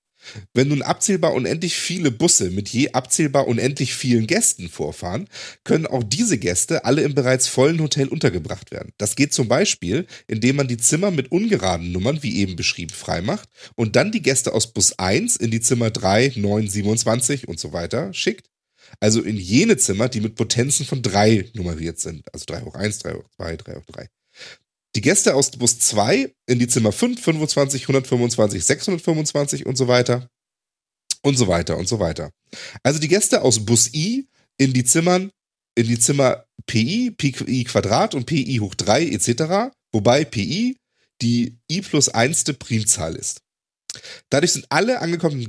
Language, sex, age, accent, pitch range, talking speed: German, male, 30-49, German, 110-145 Hz, 170 wpm